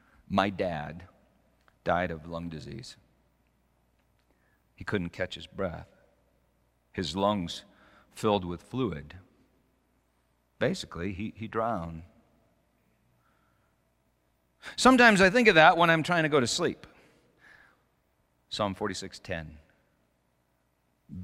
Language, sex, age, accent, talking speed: English, male, 40-59, American, 95 wpm